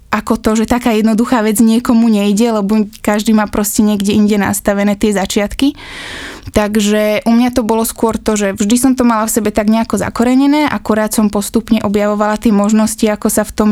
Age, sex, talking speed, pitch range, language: 20-39, female, 190 wpm, 210-225 Hz, Slovak